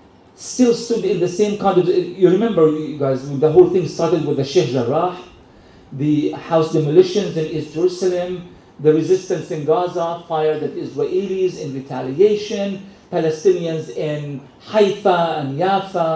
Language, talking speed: English, 150 wpm